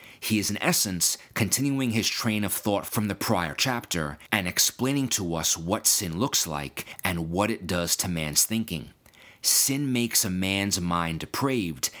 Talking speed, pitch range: 170 wpm, 85-110 Hz